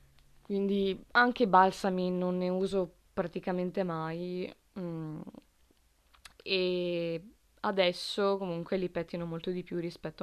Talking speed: 105 wpm